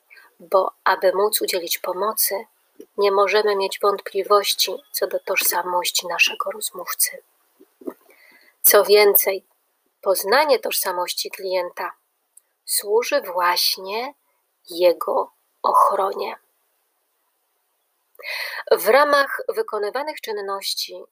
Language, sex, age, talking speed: Polish, female, 30-49, 75 wpm